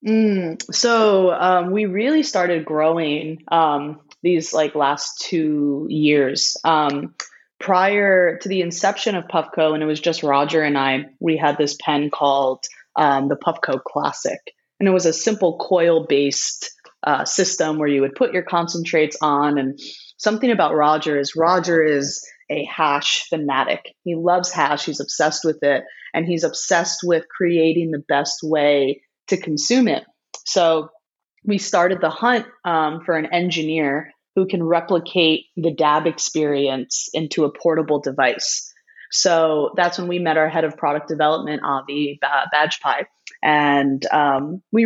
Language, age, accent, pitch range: Hebrew, 20-39, American, 150-185 Hz